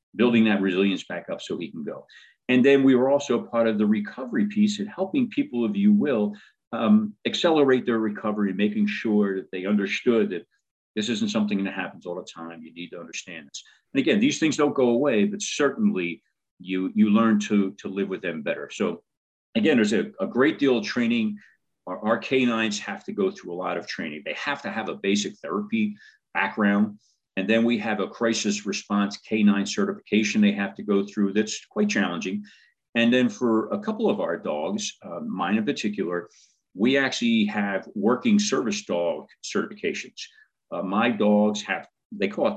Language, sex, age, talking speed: English, male, 40-59, 195 wpm